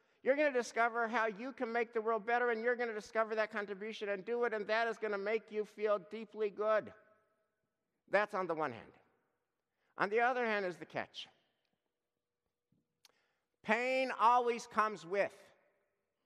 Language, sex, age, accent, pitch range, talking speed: English, male, 50-69, American, 220-250 Hz, 175 wpm